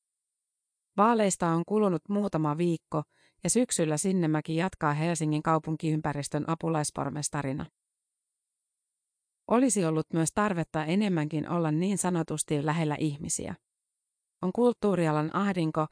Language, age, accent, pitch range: Finnish, 30-49, native, 155-185 Hz